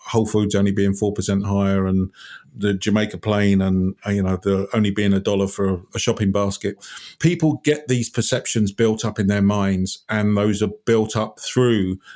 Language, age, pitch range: English, 50-69, 100-120 Hz